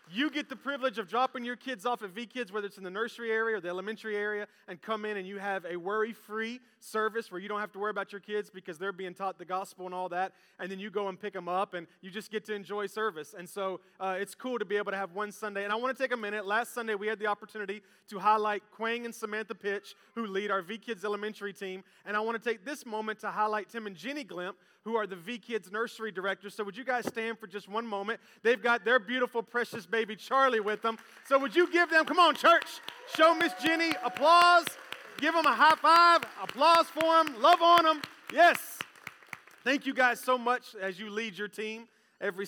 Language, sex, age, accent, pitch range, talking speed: English, male, 30-49, American, 185-230 Hz, 250 wpm